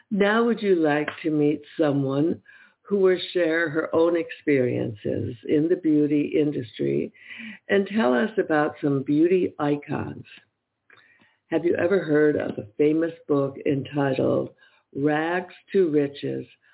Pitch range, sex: 135-180 Hz, female